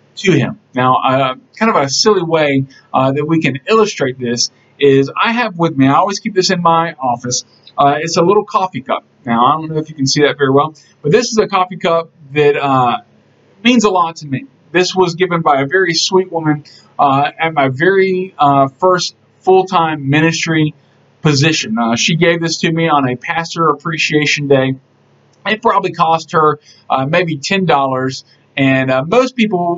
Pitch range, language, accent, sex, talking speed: 145-190 Hz, English, American, male, 195 wpm